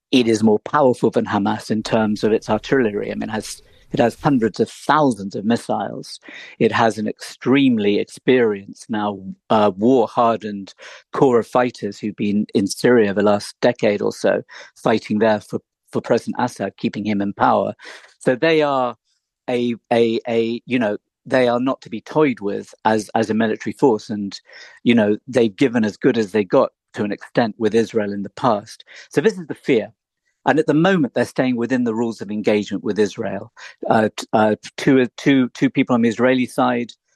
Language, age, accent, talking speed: English, 50-69, British, 195 wpm